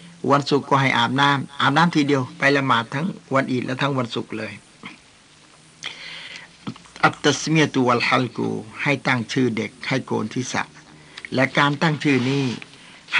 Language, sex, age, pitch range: Thai, male, 60-79, 125-145 Hz